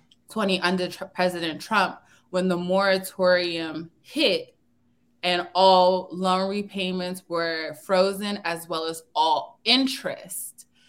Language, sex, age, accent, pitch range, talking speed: English, female, 20-39, American, 175-195 Hz, 110 wpm